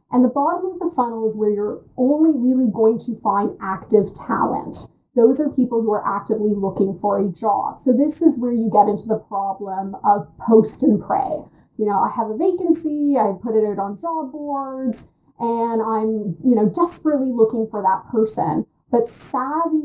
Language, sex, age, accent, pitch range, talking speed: English, female, 30-49, American, 210-265 Hz, 190 wpm